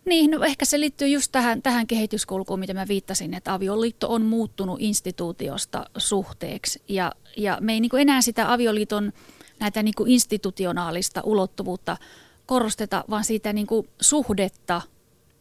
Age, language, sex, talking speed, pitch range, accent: 30-49, Finnish, female, 145 wpm, 190-235 Hz, native